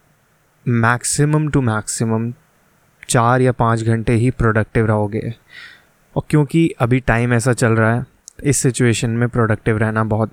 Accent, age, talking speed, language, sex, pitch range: native, 20-39, 140 wpm, Hindi, male, 115-130 Hz